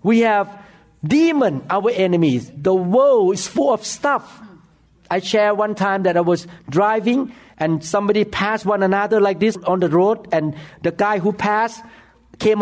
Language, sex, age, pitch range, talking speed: English, male, 60-79, 155-215 Hz, 165 wpm